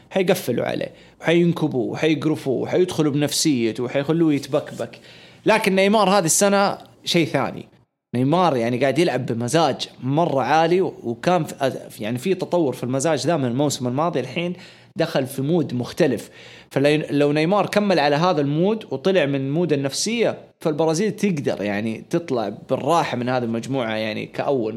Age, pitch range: 20-39, 130-175 Hz